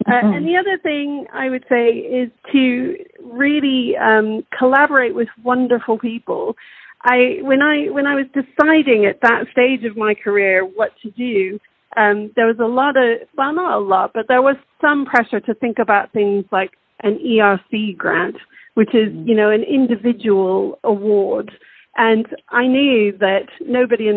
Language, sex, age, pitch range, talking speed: English, female, 40-59, 215-255 Hz, 170 wpm